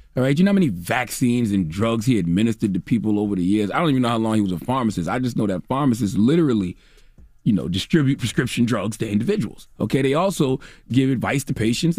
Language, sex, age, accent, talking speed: English, male, 30-49, American, 230 wpm